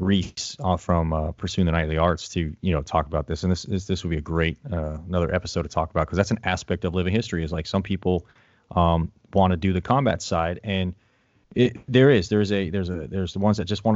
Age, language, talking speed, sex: 30-49, English, 260 wpm, male